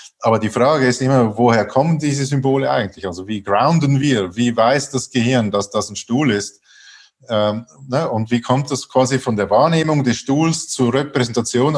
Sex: male